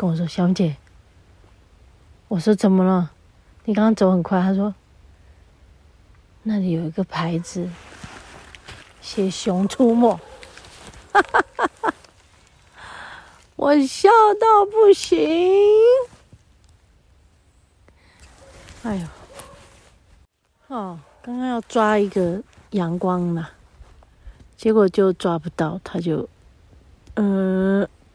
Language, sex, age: Chinese, female, 40-59